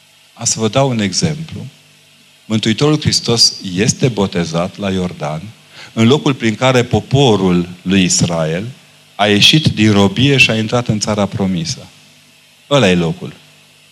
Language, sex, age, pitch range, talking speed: Romanian, male, 40-59, 95-125 Hz, 140 wpm